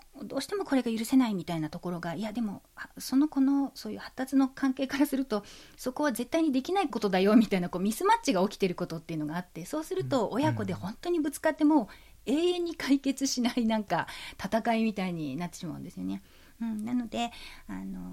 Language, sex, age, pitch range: Japanese, female, 40-59, 185-280 Hz